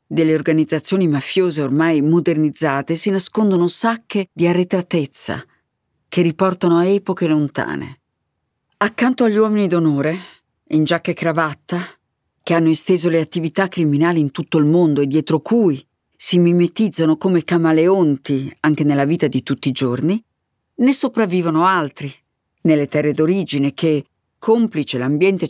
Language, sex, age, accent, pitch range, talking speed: Italian, female, 50-69, native, 150-195 Hz, 130 wpm